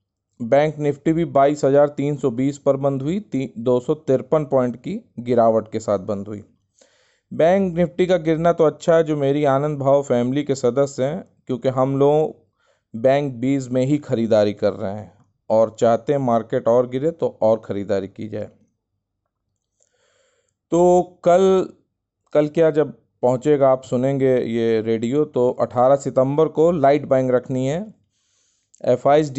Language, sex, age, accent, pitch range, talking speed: Hindi, male, 40-59, native, 125-155 Hz, 145 wpm